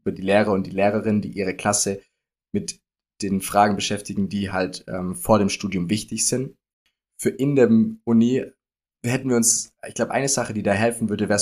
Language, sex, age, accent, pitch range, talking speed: German, male, 20-39, German, 95-115 Hz, 195 wpm